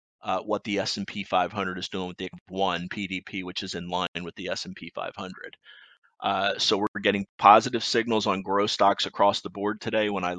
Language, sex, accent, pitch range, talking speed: English, male, American, 95-105 Hz, 195 wpm